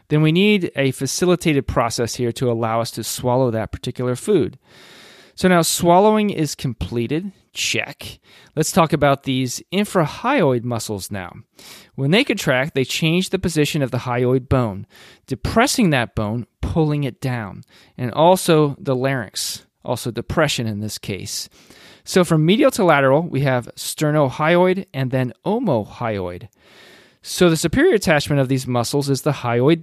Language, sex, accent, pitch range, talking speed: English, male, American, 120-160 Hz, 150 wpm